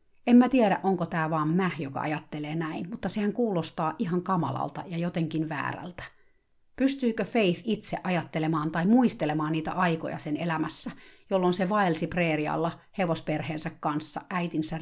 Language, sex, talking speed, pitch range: Finnish, female, 140 wpm, 155-195 Hz